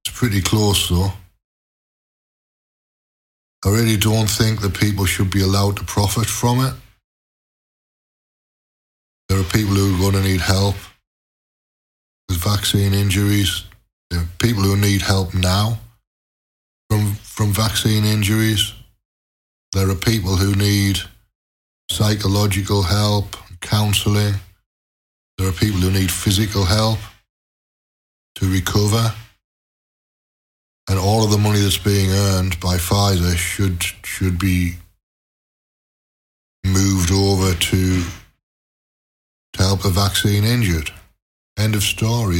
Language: English